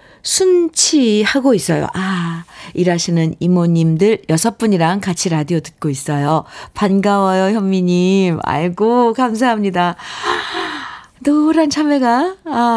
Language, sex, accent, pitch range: Korean, female, native, 155-215 Hz